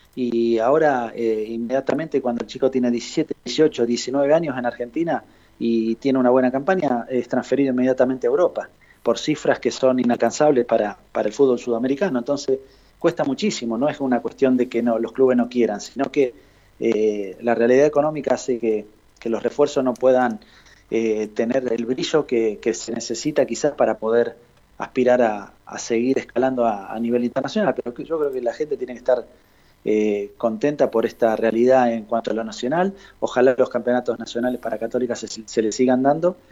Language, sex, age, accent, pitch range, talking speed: Spanish, male, 30-49, Argentinian, 115-135 Hz, 180 wpm